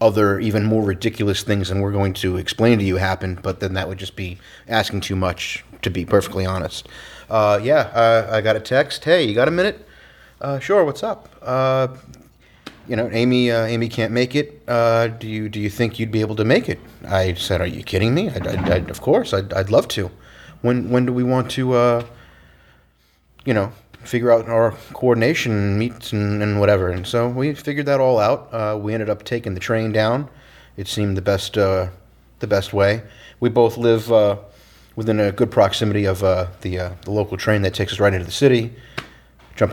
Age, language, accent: 30-49, English, American